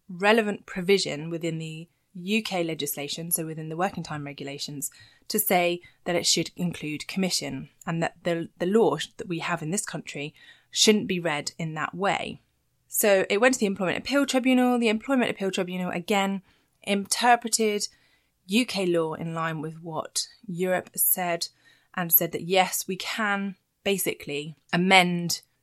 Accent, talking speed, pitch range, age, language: British, 155 wpm, 165-200 Hz, 20-39, English